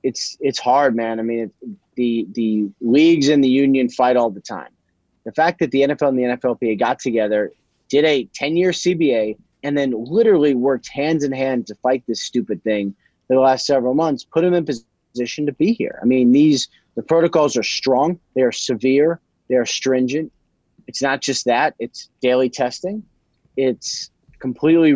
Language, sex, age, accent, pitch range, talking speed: English, male, 30-49, American, 120-145 Hz, 180 wpm